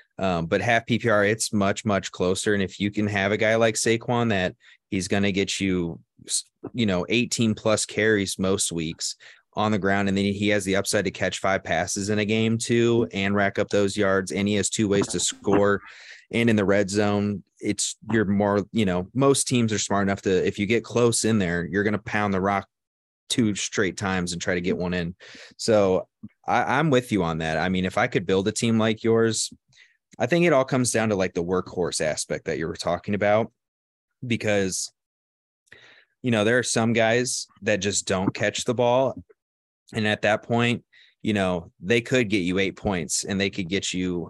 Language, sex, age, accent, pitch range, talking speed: English, male, 30-49, American, 95-115 Hz, 215 wpm